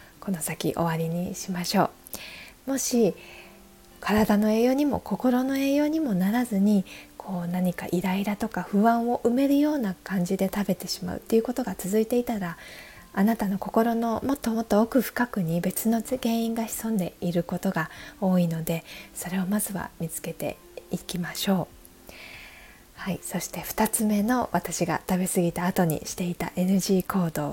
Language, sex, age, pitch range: Japanese, female, 20-39, 175-225 Hz